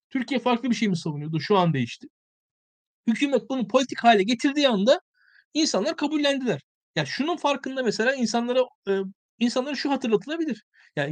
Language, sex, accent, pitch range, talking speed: Turkish, male, native, 195-260 Hz, 145 wpm